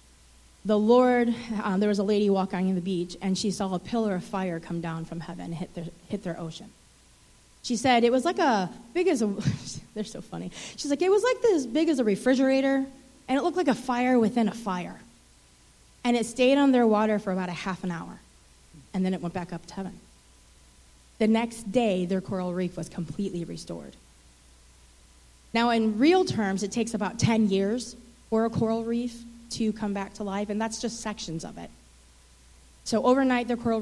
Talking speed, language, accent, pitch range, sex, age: 200 wpm, English, American, 175-235 Hz, female, 30-49